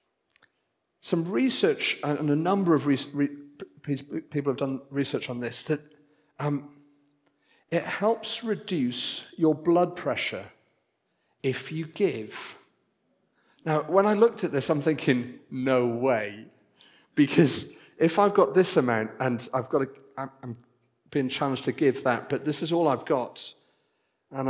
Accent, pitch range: British, 130-200 Hz